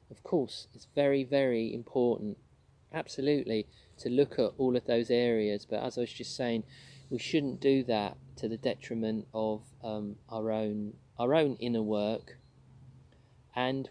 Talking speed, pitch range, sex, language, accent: 155 wpm, 110-130 Hz, male, English, British